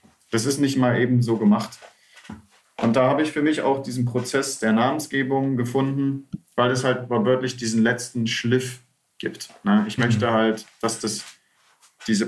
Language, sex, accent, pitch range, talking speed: German, male, German, 115-135 Hz, 165 wpm